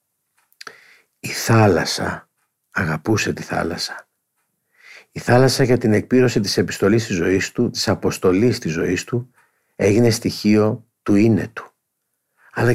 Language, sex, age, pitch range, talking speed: Greek, male, 50-69, 95-115 Hz, 120 wpm